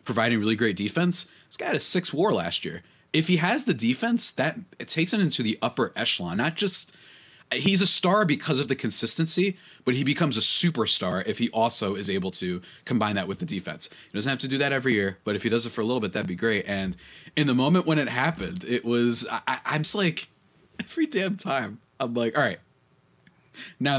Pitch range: 115-165 Hz